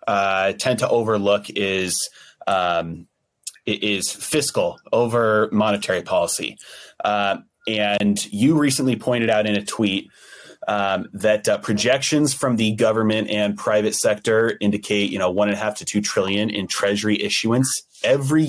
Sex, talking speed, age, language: male, 145 wpm, 30-49, English